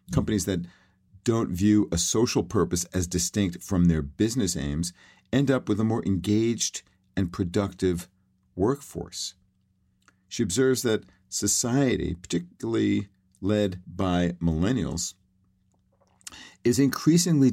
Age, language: 50-69, English